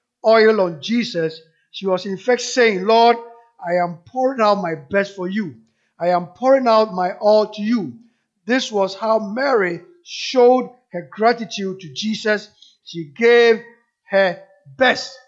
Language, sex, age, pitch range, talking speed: English, male, 50-69, 175-235 Hz, 150 wpm